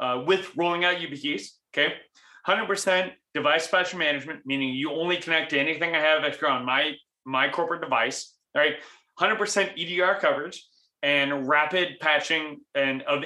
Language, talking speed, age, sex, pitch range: English, 165 wpm, 30-49, male, 140-185 Hz